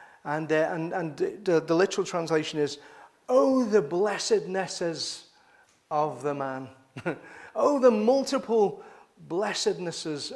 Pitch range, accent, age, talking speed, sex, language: 150-205 Hz, British, 40-59, 110 wpm, male, English